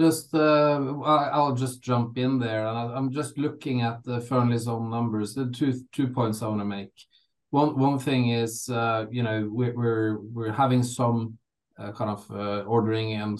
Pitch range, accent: 105-120 Hz, Norwegian